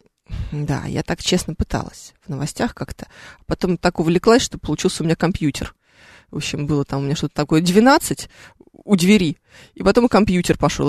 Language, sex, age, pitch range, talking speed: Russian, female, 20-39, 160-200 Hz, 175 wpm